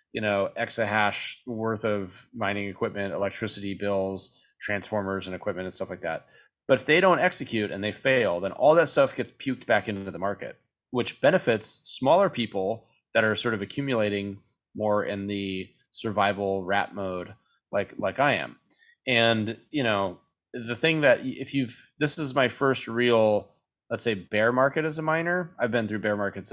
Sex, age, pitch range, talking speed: male, 30-49, 100-120 Hz, 175 wpm